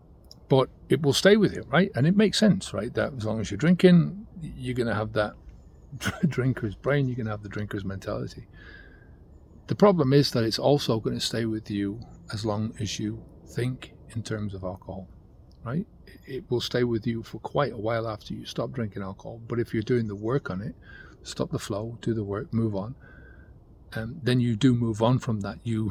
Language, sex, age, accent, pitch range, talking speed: English, male, 40-59, British, 105-125 Hz, 215 wpm